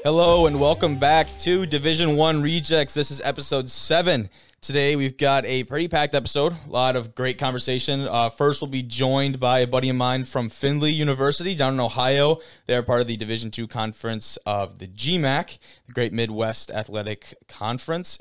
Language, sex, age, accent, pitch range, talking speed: English, male, 20-39, American, 115-145 Hz, 180 wpm